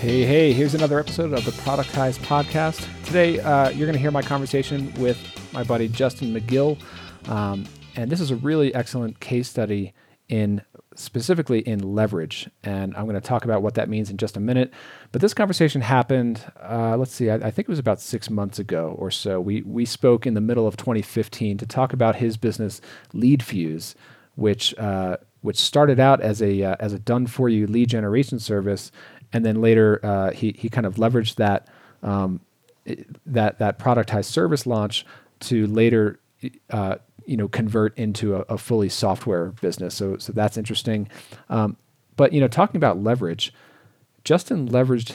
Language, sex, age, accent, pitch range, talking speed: English, male, 40-59, American, 105-130 Hz, 180 wpm